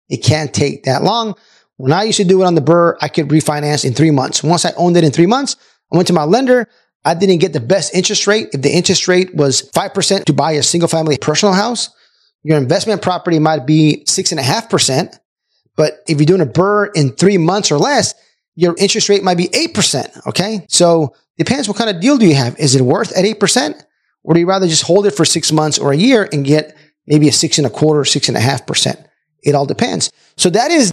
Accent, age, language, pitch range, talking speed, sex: American, 30-49, English, 150-195 Hz, 235 wpm, male